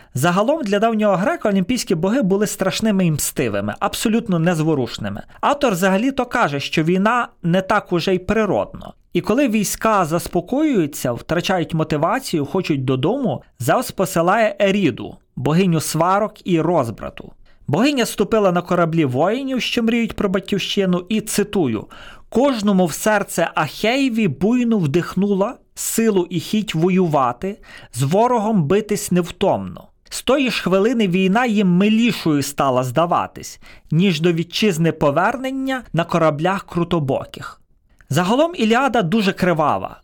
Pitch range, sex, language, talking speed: 165-215 Hz, male, Ukrainian, 125 wpm